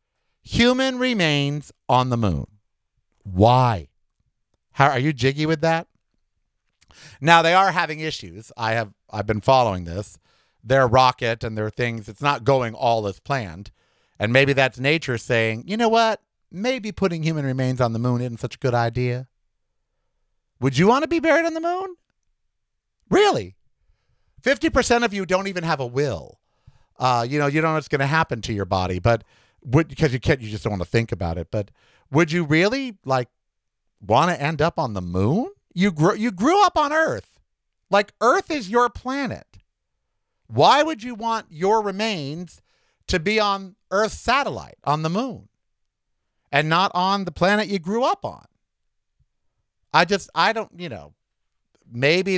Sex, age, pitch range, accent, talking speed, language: male, 50-69, 120-195 Hz, American, 175 wpm, English